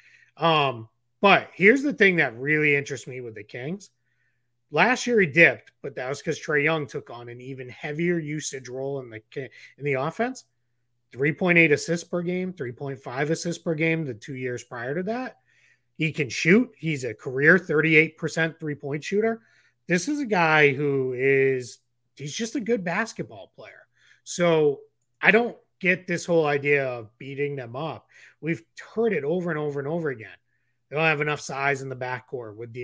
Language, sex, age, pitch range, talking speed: English, male, 30-49, 125-170 Hz, 185 wpm